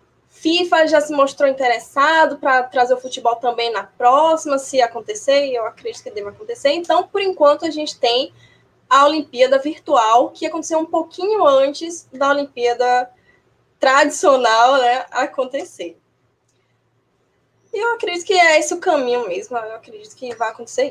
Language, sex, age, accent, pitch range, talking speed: Portuguese, female, 10-29, Brazilian, 245-330 Hz, 150 wpm